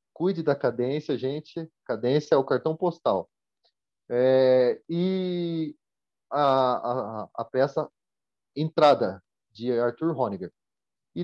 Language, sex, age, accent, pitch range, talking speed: Portuguese, male, 30-49, Brazilian, 125-185 Hz, 95 wpm